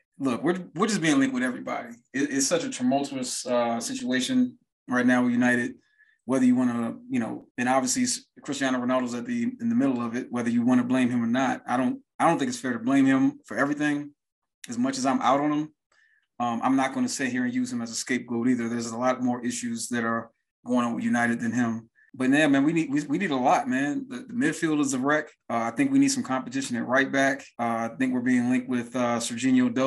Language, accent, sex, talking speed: English, American, male, 250 wpm